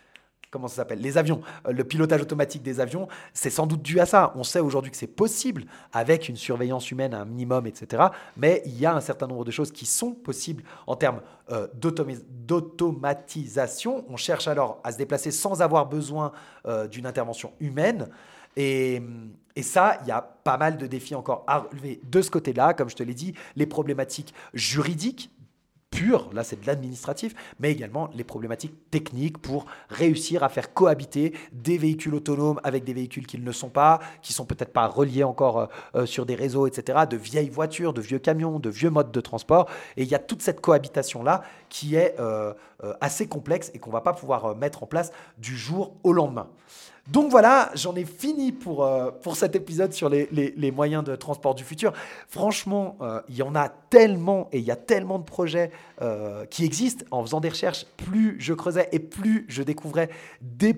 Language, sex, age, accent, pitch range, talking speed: French, male, 30-49, French, 130-170 Hz, 200 wpm